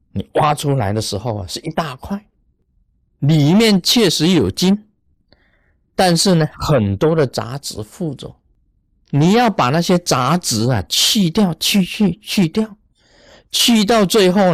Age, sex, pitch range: 50-69, male, 120-190 Hz